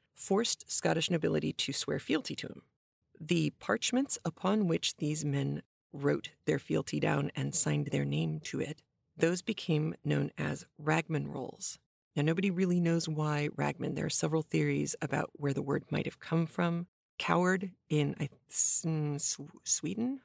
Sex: female